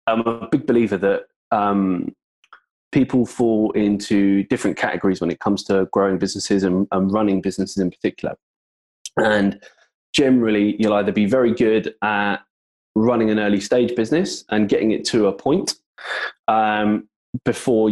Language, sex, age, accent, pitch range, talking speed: English, male, 20-39, British, 95-110 Hz, 145 wpm